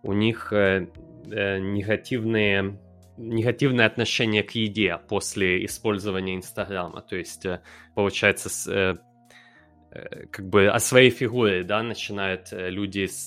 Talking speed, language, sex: 85 wpm, Russian, male